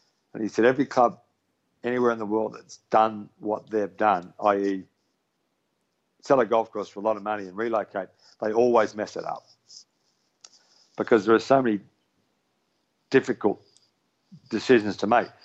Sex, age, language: male, 50-69, English